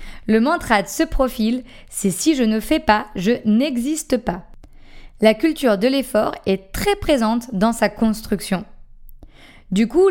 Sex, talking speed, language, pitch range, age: female, 155 wpm, French, 210-280 Hz, 20-39